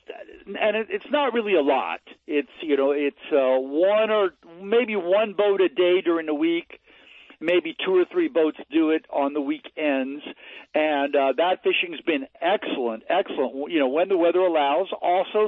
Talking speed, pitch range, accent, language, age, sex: 180 wpm, 145-215 Hz, American, English, 60-79, male